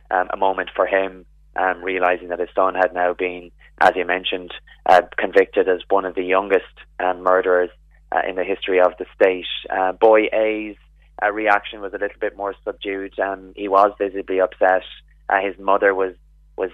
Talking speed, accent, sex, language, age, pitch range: 190 wpm, Irish, male, English, 20-39, 90-105 Hz